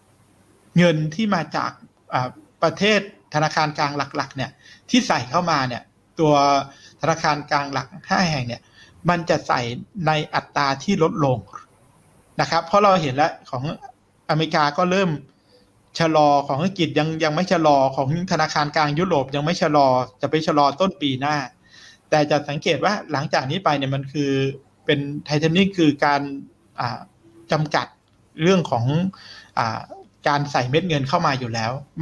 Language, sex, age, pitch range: Thai, male, 60-79, 135-165 Hz